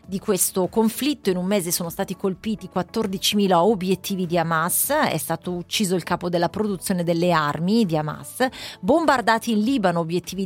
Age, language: 30-49, Italian